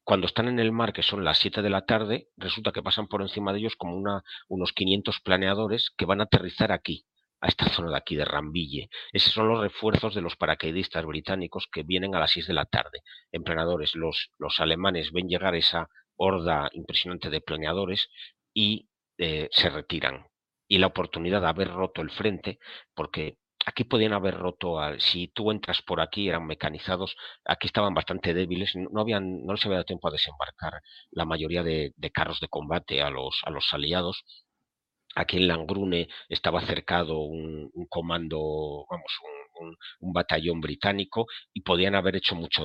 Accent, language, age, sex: Spanish, Spanish, 50-69, male